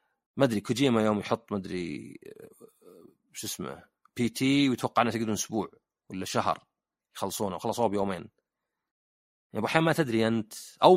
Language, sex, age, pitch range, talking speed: Arabic, male, 40-59, 110-155 Hz, 135 wpm